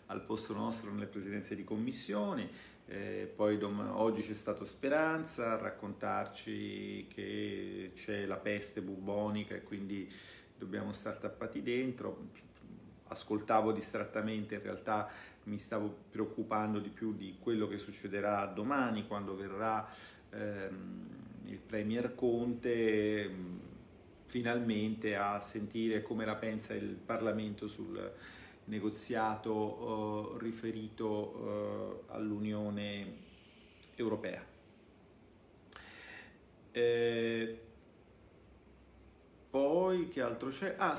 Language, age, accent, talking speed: Italian, 40-59, native, 100 wpm